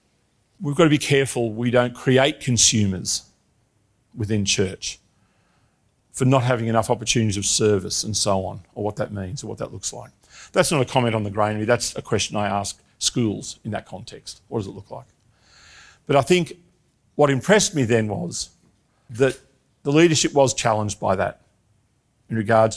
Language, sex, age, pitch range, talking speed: English, male, 50-69, 105-130 Hz, 180 wpm